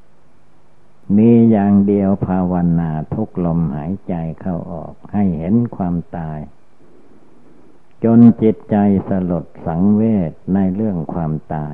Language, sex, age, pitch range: Thai, male, 60-79, 85-100 Hz